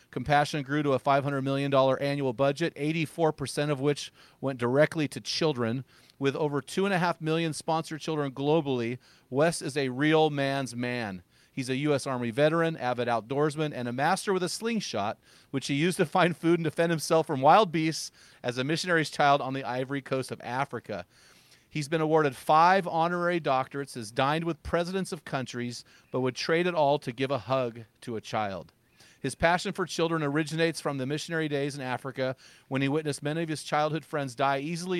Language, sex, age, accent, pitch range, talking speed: English, male, 40-59, American, 130-160 Hz, 185 wpm